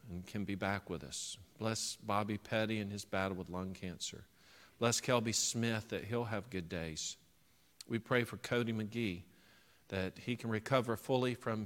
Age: 50-69